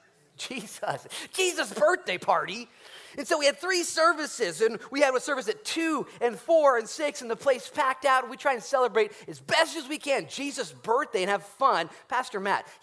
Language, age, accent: English, 30-49, American